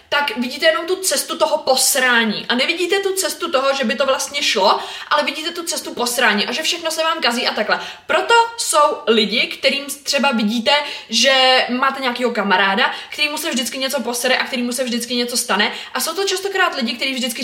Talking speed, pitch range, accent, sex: 200 wpm, 240-295 Hz, native, female